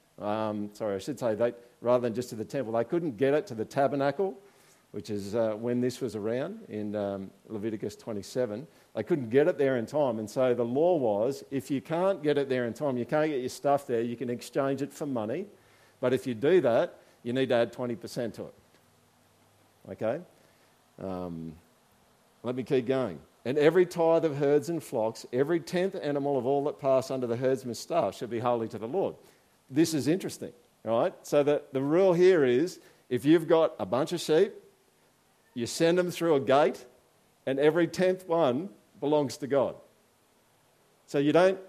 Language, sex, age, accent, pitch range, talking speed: English, male, 50-69, Australian, 120-155 Hz, 195 wpm